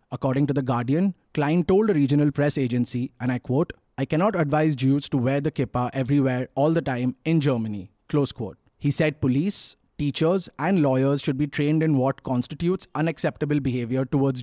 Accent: Indian